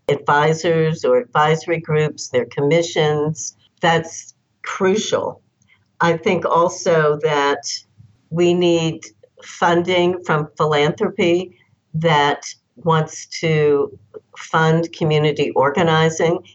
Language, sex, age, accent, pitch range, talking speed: English, female, 60-79, American, 145-165 Hz, 85 wpm